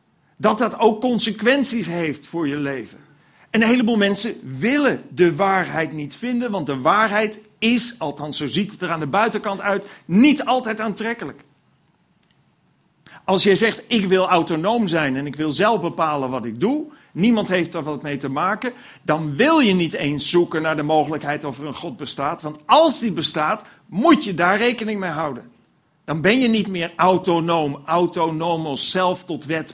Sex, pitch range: male, 150-220 Hz